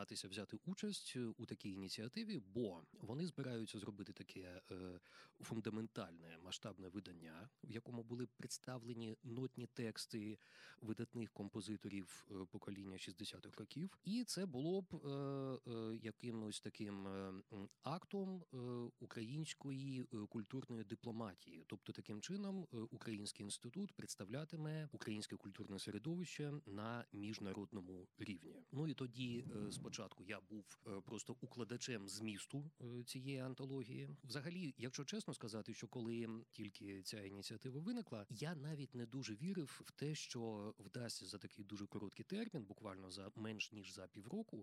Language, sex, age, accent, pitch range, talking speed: Ukrainian, male, 20-39, native, 105-135 Hz, 115 wpm